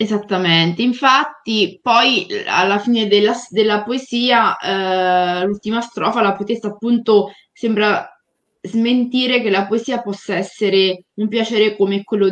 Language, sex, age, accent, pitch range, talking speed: Italian, female, 20-39, native, 185-220 Hz, 120 wpm